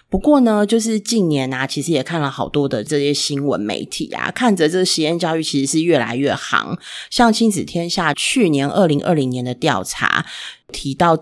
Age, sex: 30-49, female